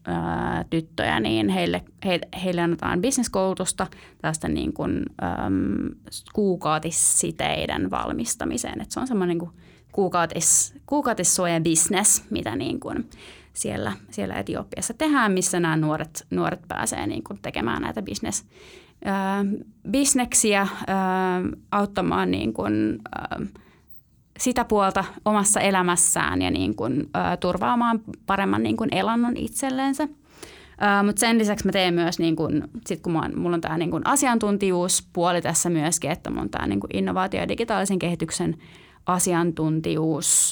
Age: 30-49